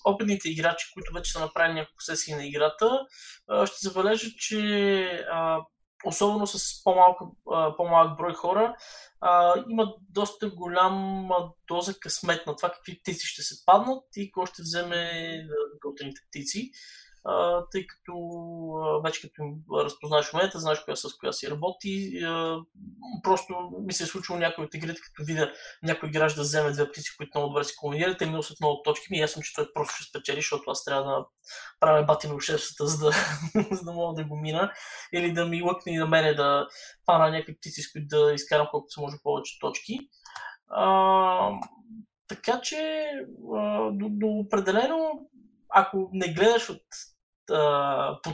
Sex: male